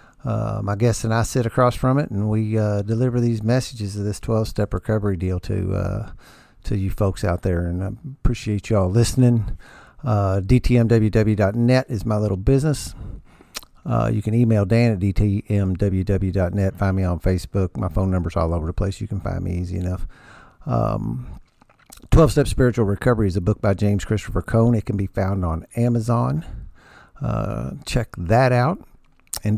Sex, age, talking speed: male, 50-69, 170 wpm